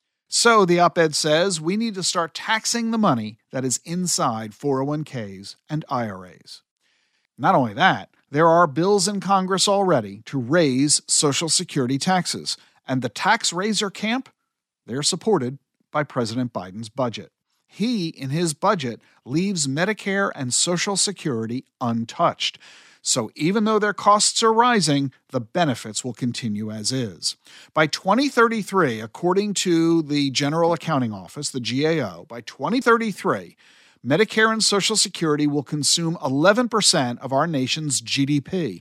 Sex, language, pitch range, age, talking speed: male, English, 135-200 Hz, 50-69, 135 wpm